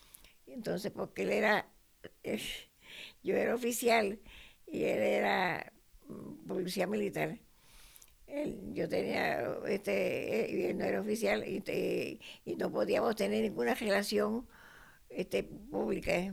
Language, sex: English, female